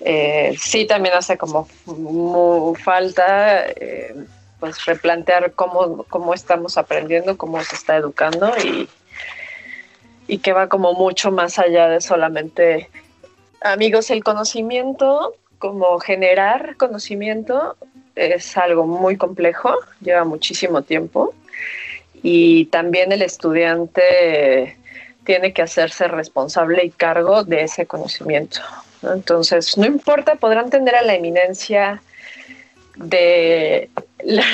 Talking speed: 110 wpm